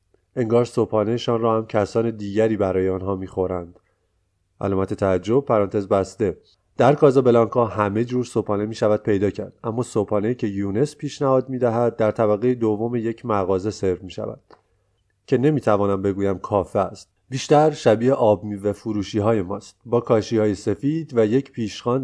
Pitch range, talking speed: 100-120 Hz, 160 wpm